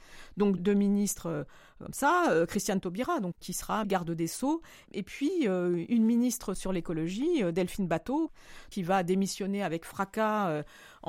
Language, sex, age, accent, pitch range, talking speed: French, female, 40-59, French, 180-235 Hz, 150 wpm